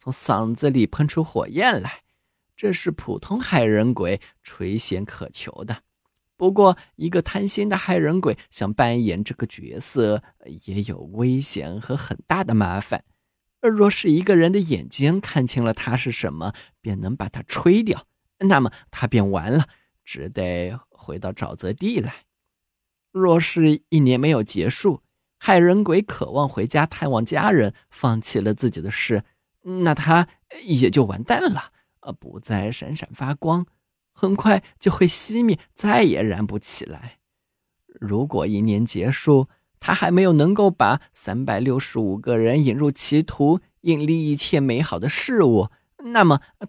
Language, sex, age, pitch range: Chinese, male, 20-39, 115-175 Hz